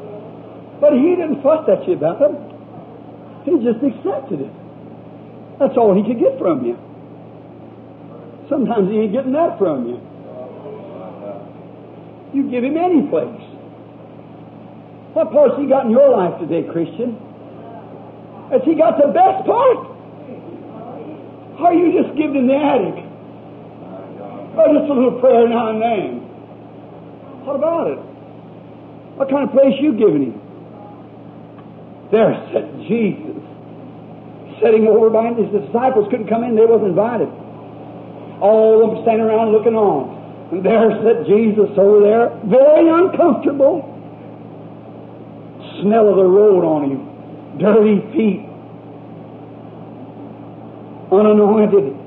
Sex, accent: male, American